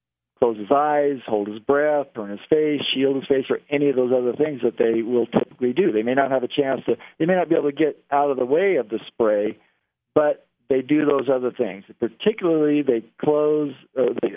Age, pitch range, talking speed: 50-69, 115-145 Hz, 225 wpm